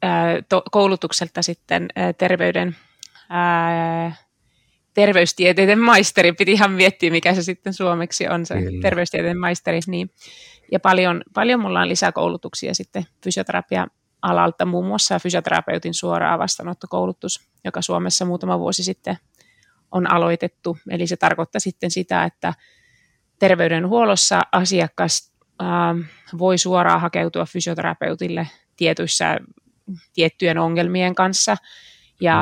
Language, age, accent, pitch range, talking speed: Finnish, 30-49, native, 165-185 Hz, 105 wpm